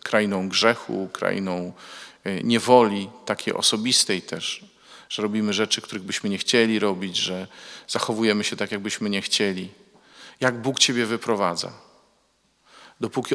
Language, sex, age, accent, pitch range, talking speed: Polish, male, 40-59, native, 95-115 Hz, 120 wpm